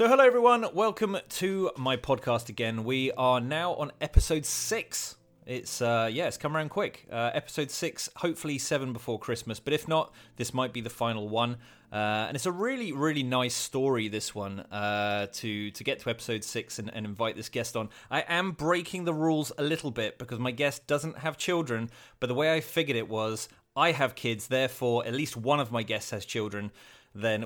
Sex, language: male, English